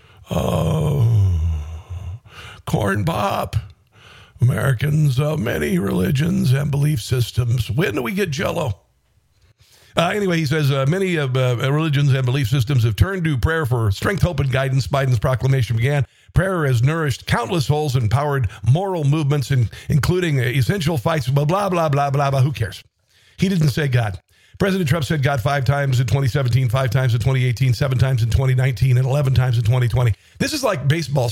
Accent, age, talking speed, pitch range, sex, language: American, 50-69, 170 wpm, 125-155 Hz, male, English